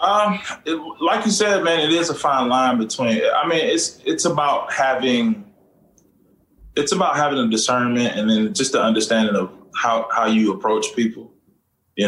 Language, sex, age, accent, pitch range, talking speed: English, male, 20-39, American, 110-165 Hz, 175 wpm